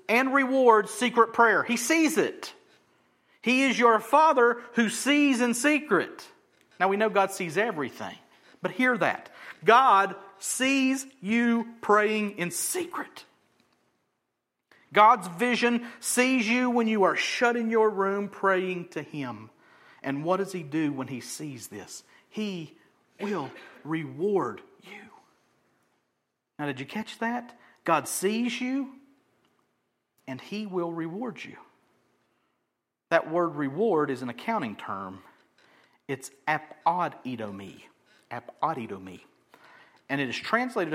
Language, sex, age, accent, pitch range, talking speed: English, male, 40-59, American, 160-235 Hz, 120 wpm